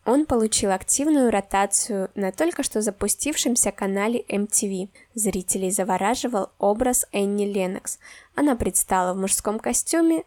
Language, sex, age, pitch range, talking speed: Russian, female, 10-29, 195-245 Hz, 115 wpm